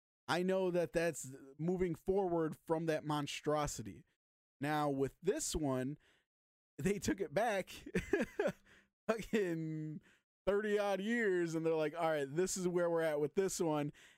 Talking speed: 140 wpm